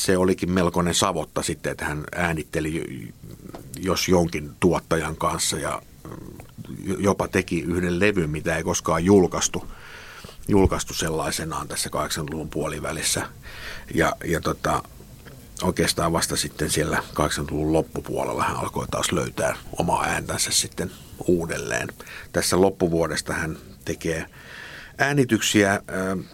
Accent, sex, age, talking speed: native, male, 50-69, 105 wpm